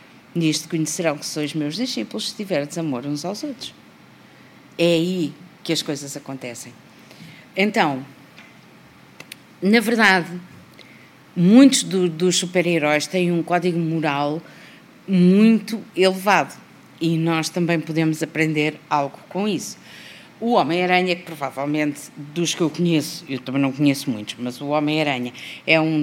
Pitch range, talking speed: 145-175 Hz, 130 wpm